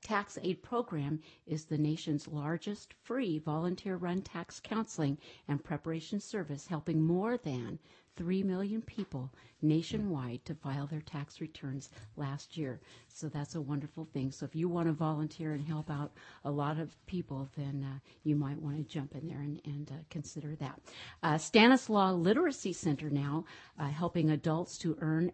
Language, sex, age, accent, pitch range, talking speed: English, female, 50-69, American, 145-175 Hz, 165 wpm